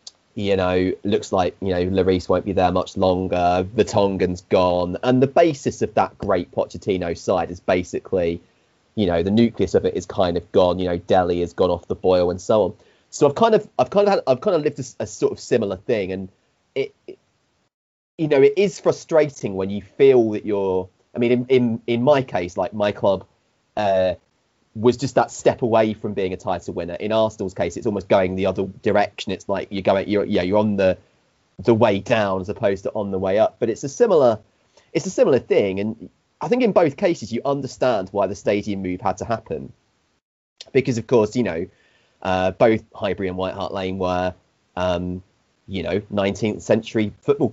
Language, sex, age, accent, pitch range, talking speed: English, male, 30-49, British, 95-125 Hz, 210 wpm